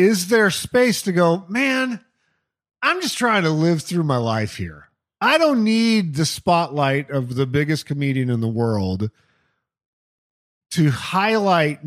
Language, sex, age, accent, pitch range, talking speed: English, male, 40-59, American, 140-195 Hz, 145 wpm